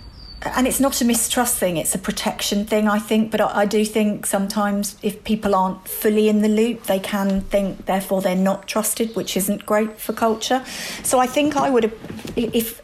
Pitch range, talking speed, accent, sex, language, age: 200-220 Hz, 200 wpm, British, female, English, 40-59